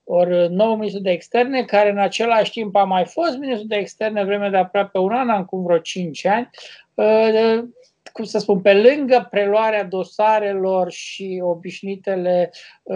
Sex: male